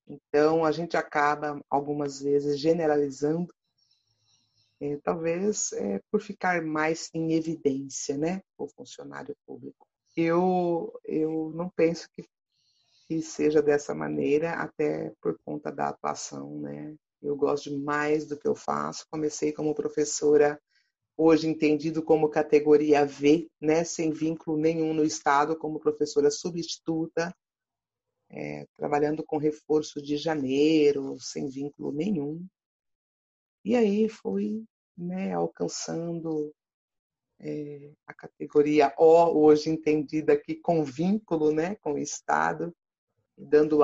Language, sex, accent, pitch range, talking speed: Portuguese, female, Brazilian, 145-160 Hz, 120 wpm